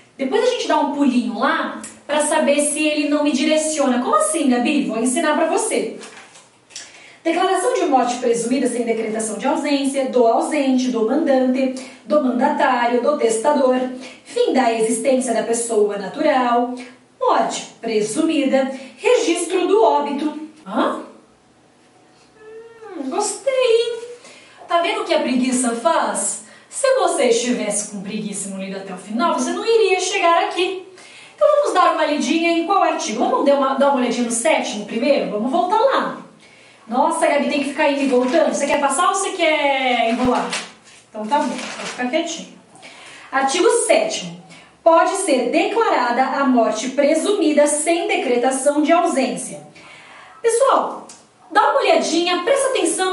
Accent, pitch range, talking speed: Brazilian, 250-345 Hz, 145 wpm